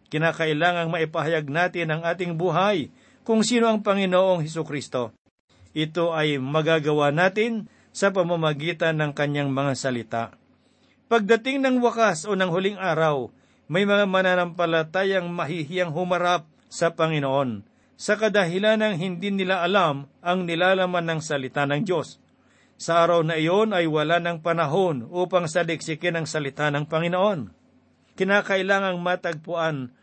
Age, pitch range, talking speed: 50-69, 155-195 Hz, 130 wpm